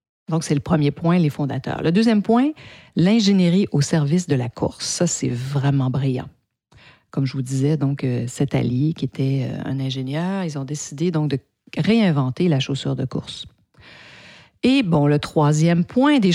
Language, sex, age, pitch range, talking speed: French, female, 50-69, 145-195 Hz, 180 wpm